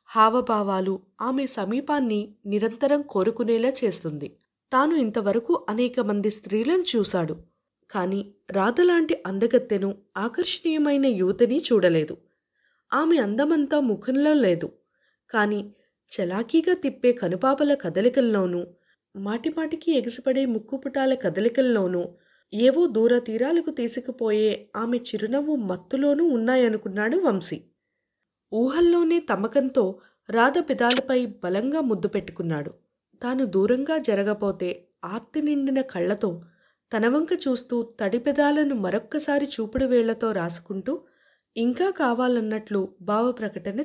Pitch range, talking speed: 200-270 Hz, 85 wpm